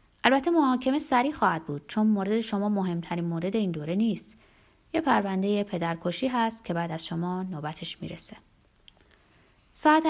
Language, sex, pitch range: Persian, female, 165-225 Hz